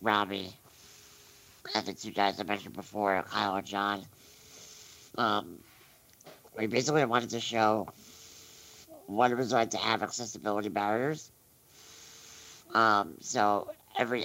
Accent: American